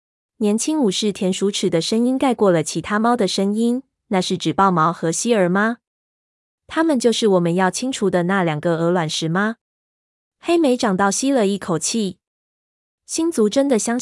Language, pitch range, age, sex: Chinese, 175-230 Hz, 20-39, female